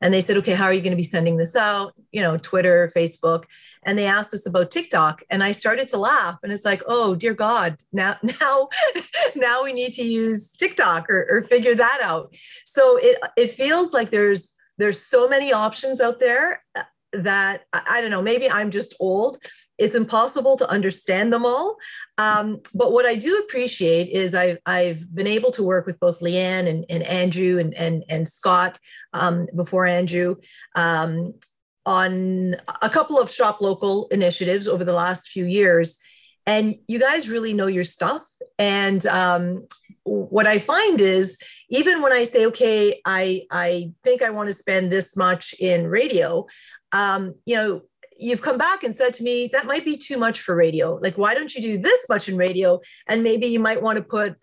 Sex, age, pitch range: female, 40-59, 180-245 Hz